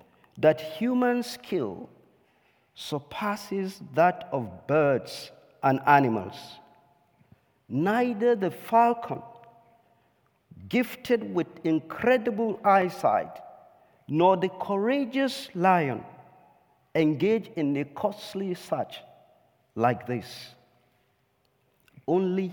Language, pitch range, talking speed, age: English, 140-220 Hz, 75 wpm, 50-69